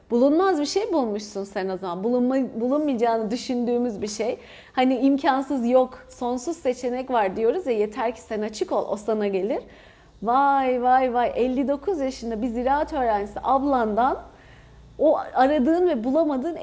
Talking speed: 150 wpm